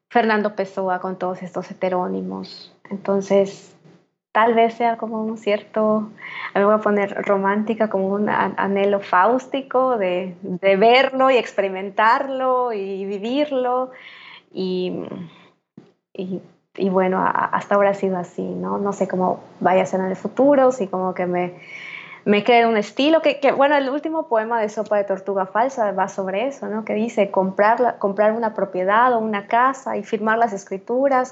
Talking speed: 165 wpm